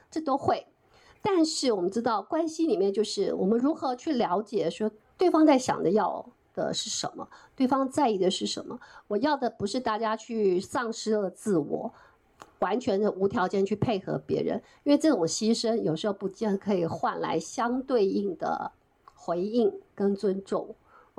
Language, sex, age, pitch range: Chinese, female, 50-69, 205-285 Hz